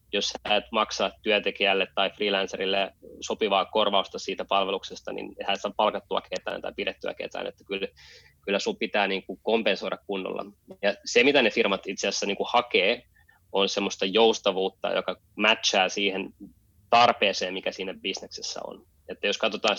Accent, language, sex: native, Finnish, male